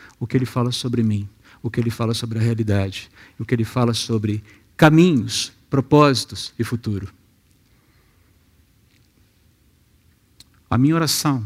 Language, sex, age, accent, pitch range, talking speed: Portuguese, male, 50-69, Brazilian, 105-120 Hz, 130 wpm